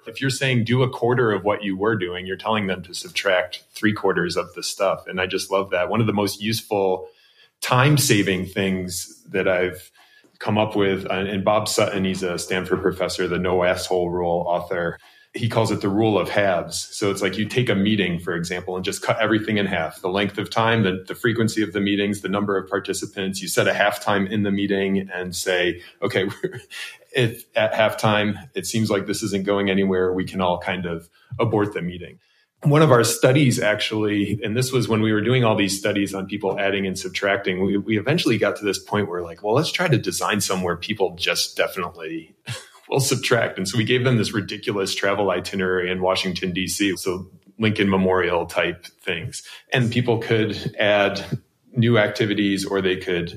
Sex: male